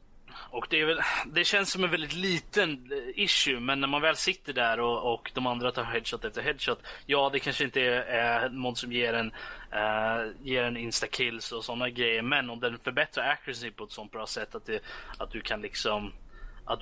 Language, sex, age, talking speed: Swedish, male, 20-39, 210 wpm